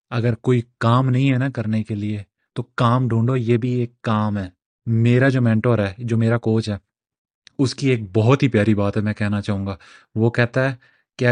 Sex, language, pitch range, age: male, Urdu, 110-125 Hz, 30-49